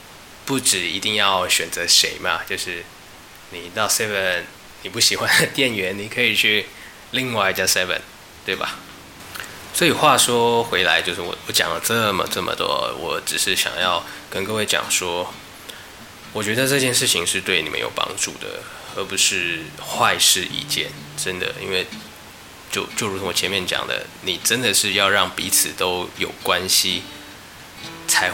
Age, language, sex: 20-39, Chinese, male